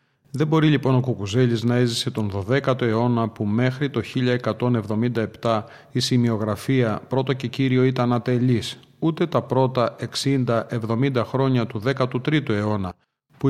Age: 40-59